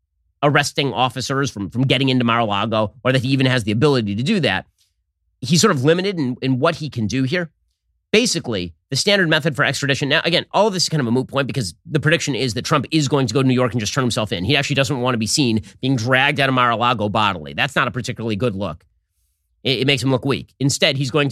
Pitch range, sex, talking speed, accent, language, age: 115-150 Hz, male, 255 wpm, American, English, 30-49